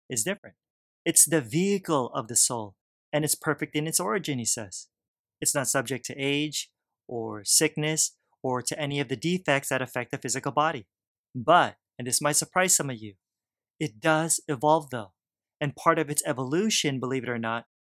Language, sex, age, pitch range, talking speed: English, male, 30-49, 130-165 Hz, 185 wpm